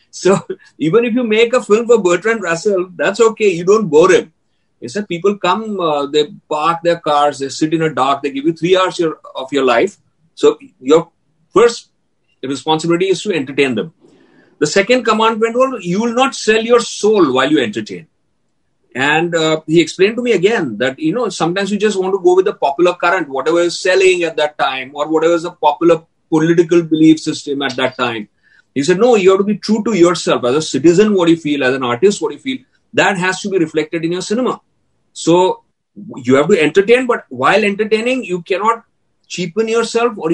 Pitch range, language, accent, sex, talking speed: 160-220 Hz, Hindi, native, male, 210 wpm